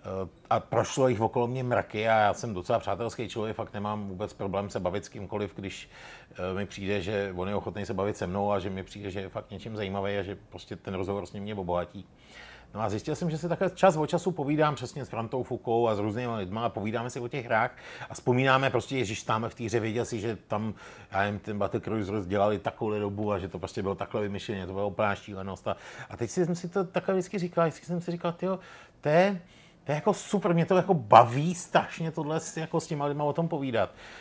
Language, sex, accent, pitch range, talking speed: Czech, male, native, 105-155 Hz, 235 wpm